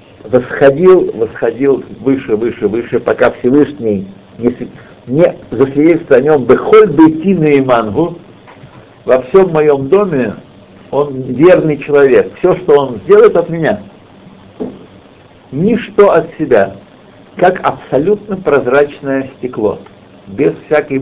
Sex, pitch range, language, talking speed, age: male, 115-180 Hz, Russian, 115 wpm, 60-79